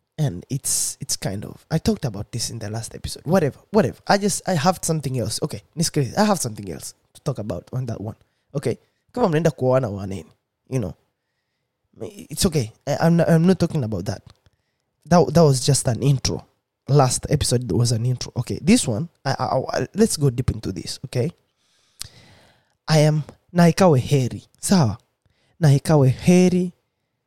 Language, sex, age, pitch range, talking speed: Swahili, male, 20-39, 115-160 Hz, 175 wpm